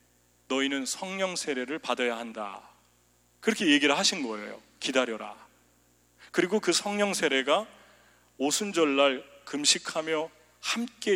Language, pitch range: English, 120-190 Hz